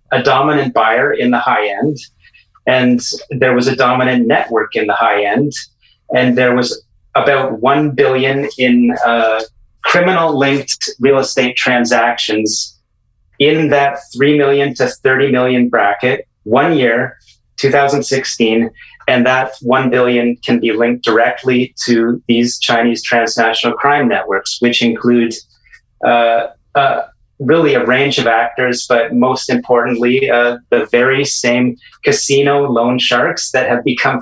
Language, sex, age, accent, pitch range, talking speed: English, male, 30-49, American, 115-135 Hz, 135 wpm